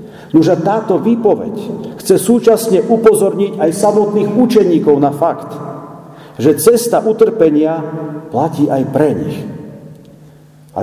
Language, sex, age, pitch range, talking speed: Slovak, male, 50-69, 145-200 Hz, 105 wpm